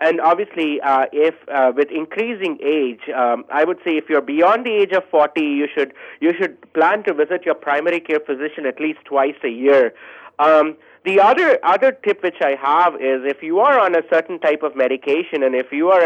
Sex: male